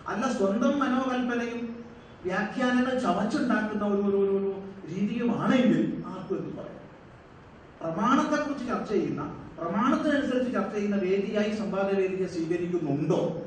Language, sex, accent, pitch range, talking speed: Malayalam, male, native, 185-245 Hz, 85 wpm